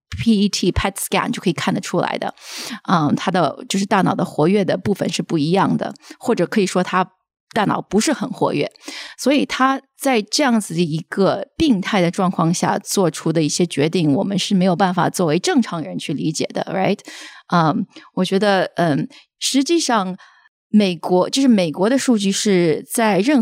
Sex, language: female, Chinese